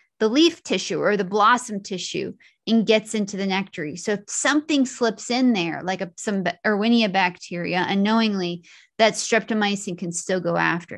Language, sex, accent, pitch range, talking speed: English, female, American, 195-245 Hz, 165 wpm